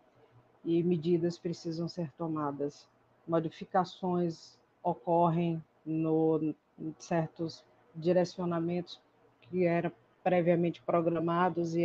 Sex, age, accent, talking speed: female, 40-59, Brazilian, 80 wpm